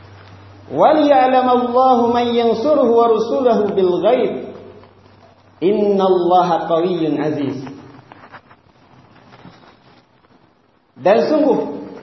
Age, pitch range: 40-59, 190-250 Hz